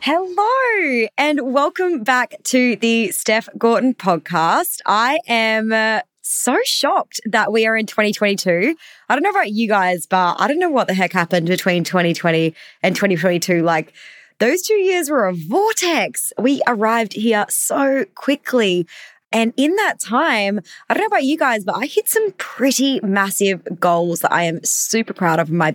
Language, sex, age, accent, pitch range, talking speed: English, female, 20-39, Australian, 175-245 Hz, 170 wpm